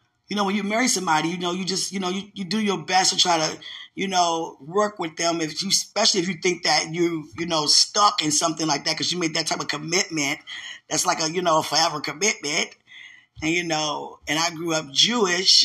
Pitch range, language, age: 130-175 Hz, English, 20-39